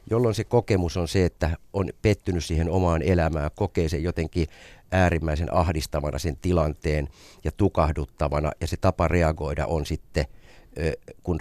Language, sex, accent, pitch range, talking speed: Finnish, male, native, 80-95 Hz, 140 wpm